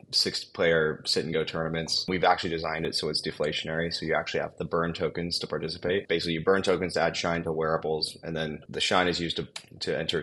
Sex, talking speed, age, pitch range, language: male, 215 wpm, 20-39, 80-90 Hz, English